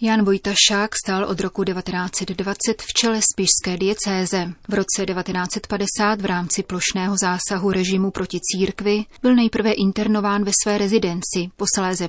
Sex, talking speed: female, 135 wpm